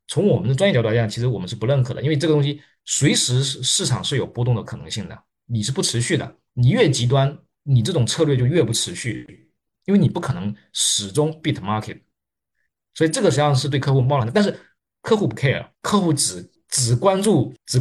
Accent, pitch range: native, 115-155 Hz